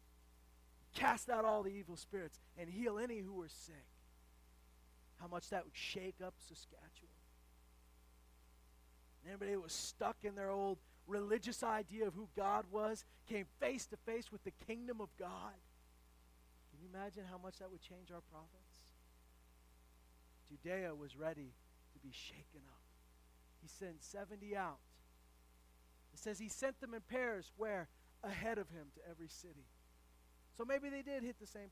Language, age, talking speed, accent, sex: English, 30-49, 155 wpm, American, male